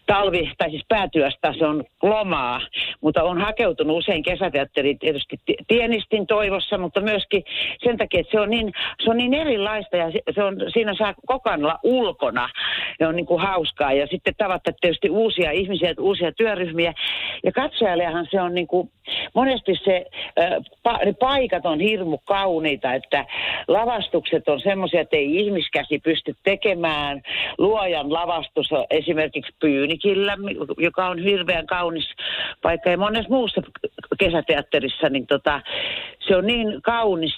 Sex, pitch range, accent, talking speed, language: female, 155-205 Hz, native, 145 wpm, Finnish